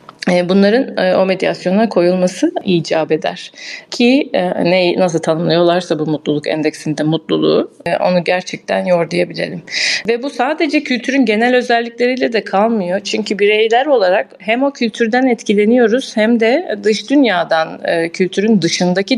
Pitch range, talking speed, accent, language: 180-235 Hz, 120 wpm, native, Turkish